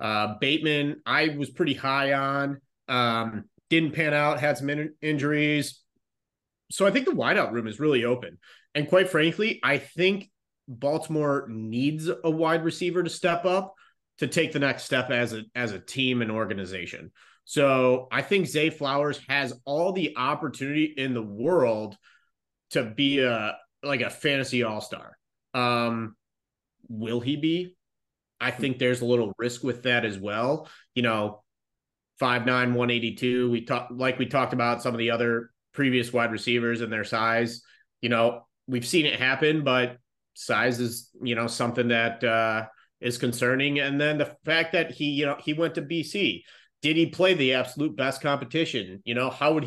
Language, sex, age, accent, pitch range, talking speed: English, male, 30-49, American, 120-150 Hz, 170 wpm